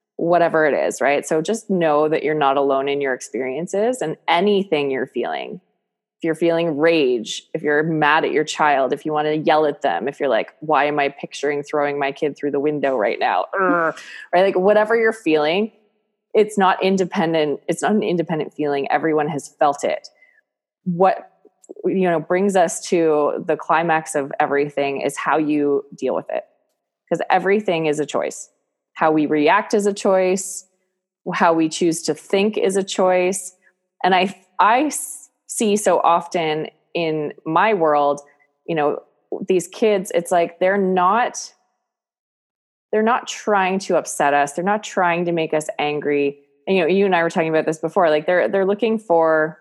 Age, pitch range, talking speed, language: 20-39, 150-190 Hz, 180 wpm, English